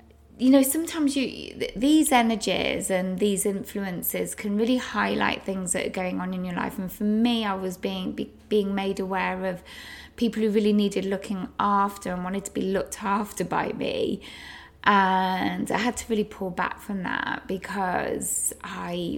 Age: 20-39